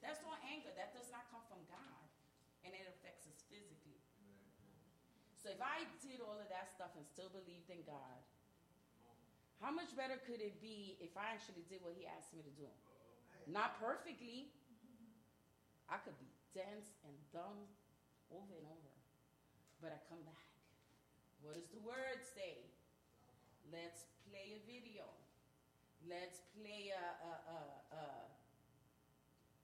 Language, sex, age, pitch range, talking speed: English, female, 30-49, 170-230 Hz, 150 wpm